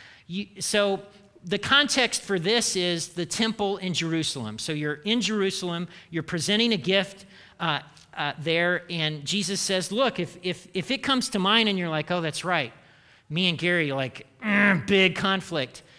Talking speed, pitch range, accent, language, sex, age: 175 wpm, 155-205 Hz, American, English, male, 40-59